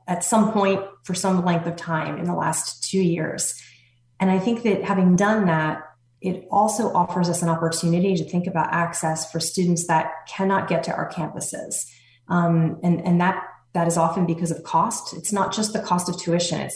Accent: American